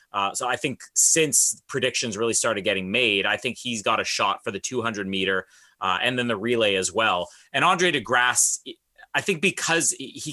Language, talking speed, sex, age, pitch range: English, 205 wpm, male, 30-49, 115-165 Hz